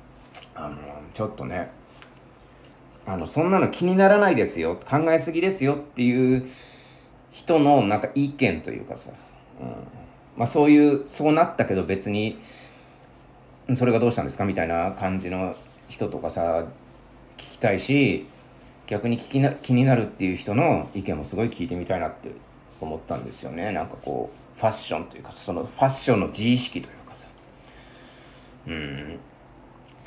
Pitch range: 95-145 Hz